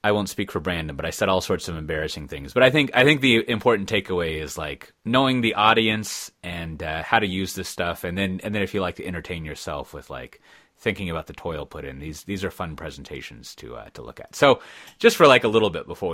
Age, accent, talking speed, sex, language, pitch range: 30-49, American, 255 wpm, male, English, 80-105 Hz